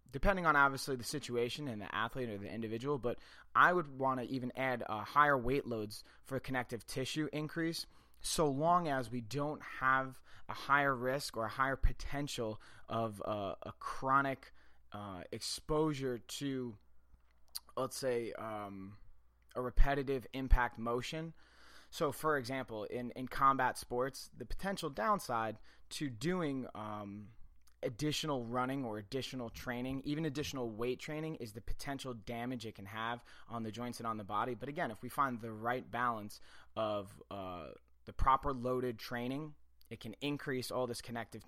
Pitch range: 110-135 Hz